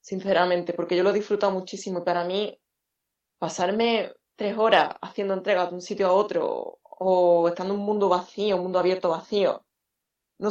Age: 20-39